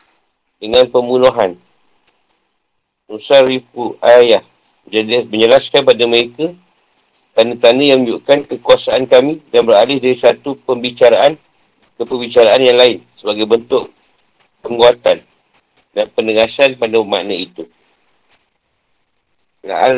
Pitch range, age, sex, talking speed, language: 115-130 Hz, 50-69, male, 95 wpm, Malay